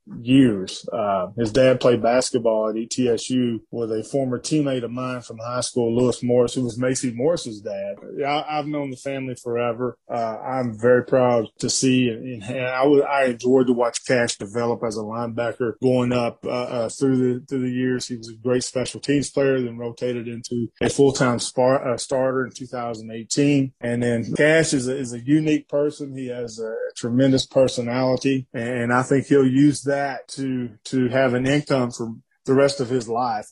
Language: English